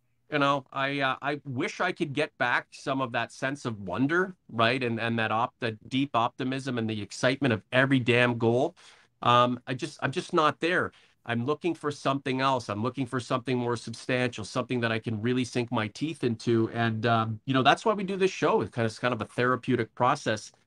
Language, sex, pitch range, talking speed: English, male, 120-150 Hz, 225 wpm